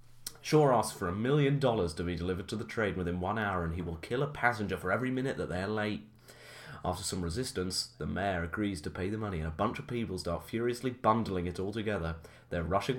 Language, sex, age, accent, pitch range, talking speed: English, male, 30-49, British, 85-115 Hz, 230 wpm